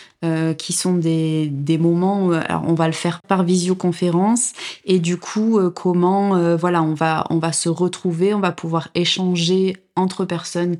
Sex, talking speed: female, 180 wpm